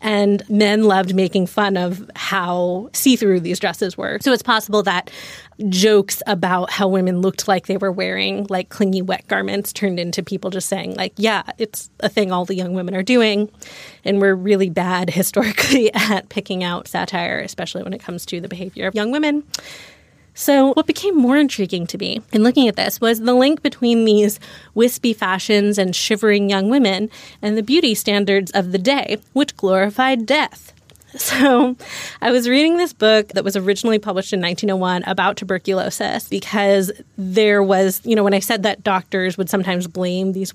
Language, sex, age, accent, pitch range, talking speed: English, female, 20-39, American, 190-220 Hz, 180 wpm